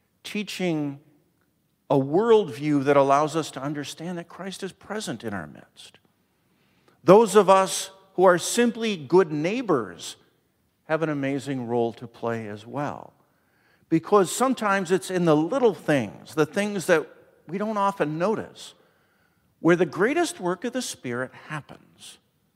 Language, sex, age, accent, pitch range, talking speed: English, male, 50-69, American, 130-185 Hz, 140 wpm